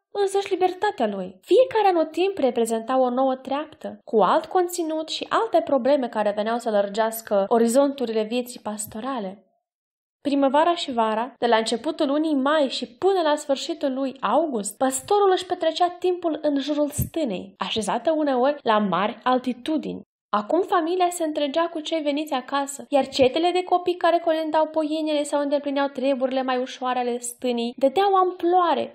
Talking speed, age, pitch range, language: 155 wpm, 20-39, 235-320 Hz, Romanian